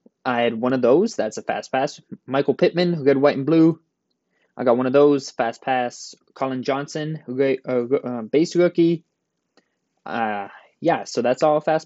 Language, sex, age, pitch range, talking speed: English, male, 20-39, 125-175 Hz, 180 wpm